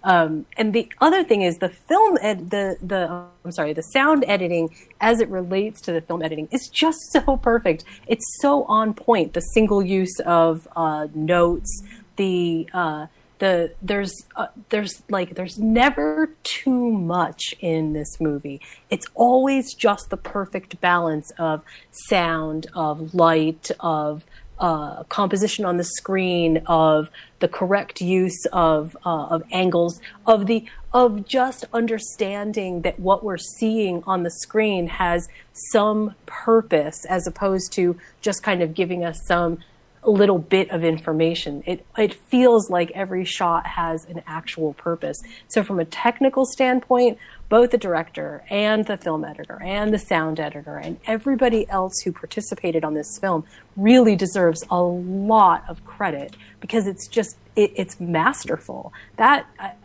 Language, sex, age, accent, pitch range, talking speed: English, female, 30-49, American, 165-215 Hz, 155 wpm